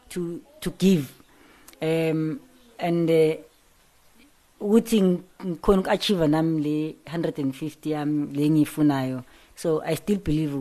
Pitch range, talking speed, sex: 150-195 Hz, 100 wpm, female